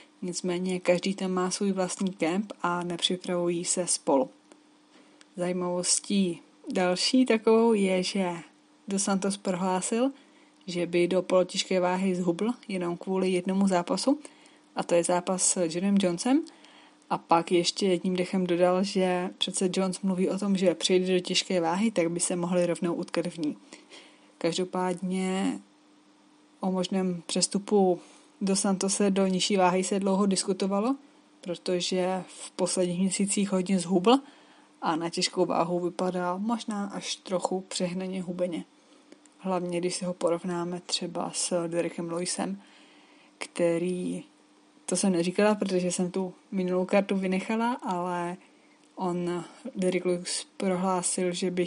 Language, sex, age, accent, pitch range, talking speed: Czech, female, 20-39, native, 175-200 Hz, 135 wpm